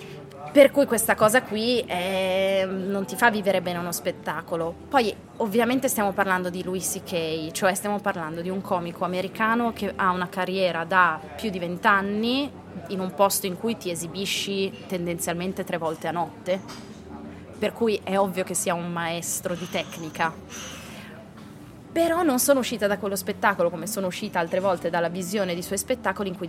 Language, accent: Italian, native